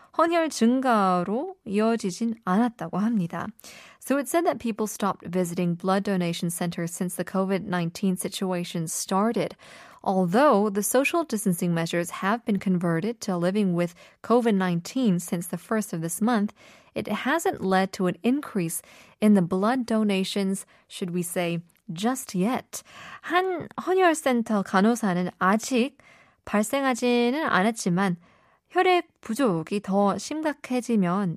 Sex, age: female, 20-39